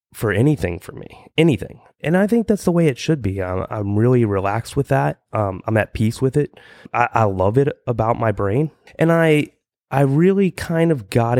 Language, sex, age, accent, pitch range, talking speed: English, male, 30-49, American, 100-145 Hz, 210 wpm